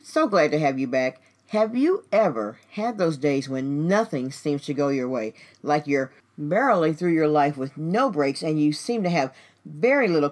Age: 40-59